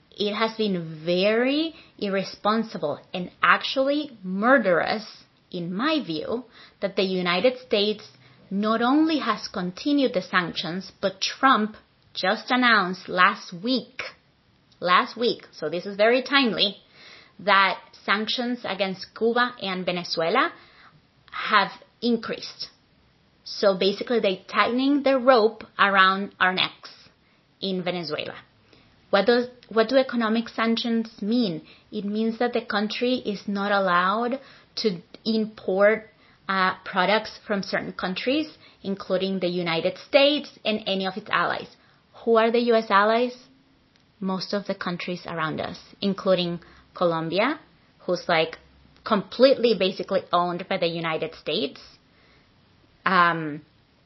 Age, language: 30-49, English